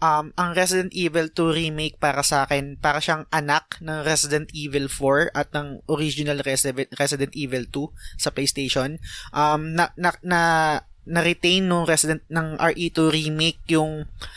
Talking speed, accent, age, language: 150 wpm, native, 20-39, Filipino